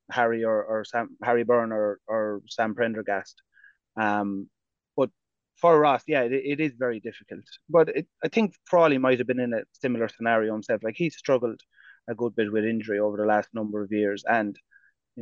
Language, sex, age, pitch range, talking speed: English, male, 30-49, 110-130 Hz, 195 wpm